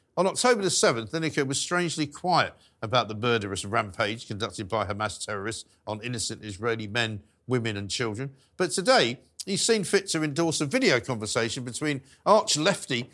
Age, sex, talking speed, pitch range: 50-69, male, 160 wpm, 110-155 Hz